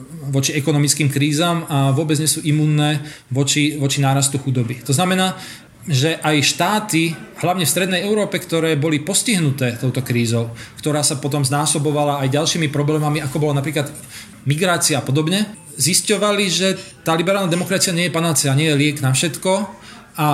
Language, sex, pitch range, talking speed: Slovak, male, 145-170 Hz, 155 wpm